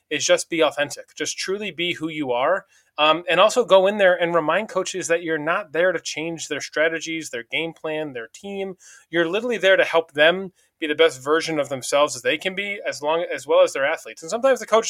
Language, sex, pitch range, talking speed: English, male, 150-175 Hz, 235 wpm